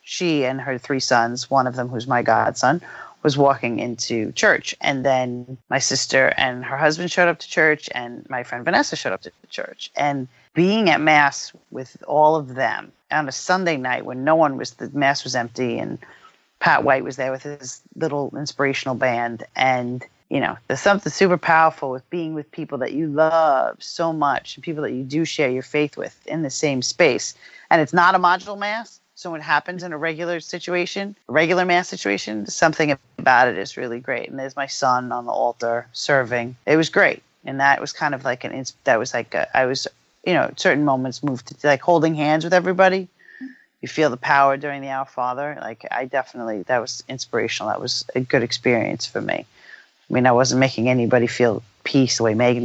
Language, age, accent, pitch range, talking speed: English, 40-59, American, 125-160 Hz, 205 wpm